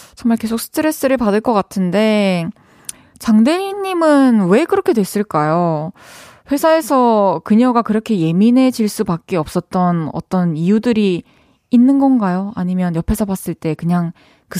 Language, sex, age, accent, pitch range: Korean, female, 20-39, native, 180-245 Hz